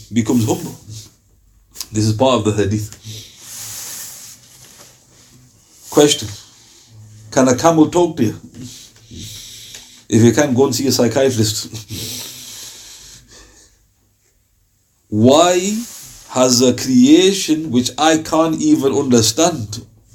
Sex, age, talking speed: male, 50-69, 95 wpm